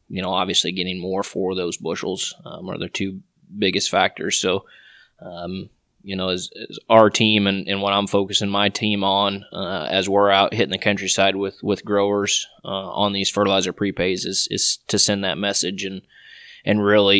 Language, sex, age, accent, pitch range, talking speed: English, male, 20-39, American, 95-100 Hz, 190 wpm